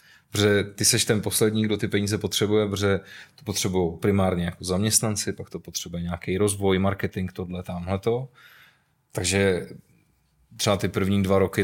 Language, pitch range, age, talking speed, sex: Czech, 95-105 Hz, 20-39, 150 wpm, male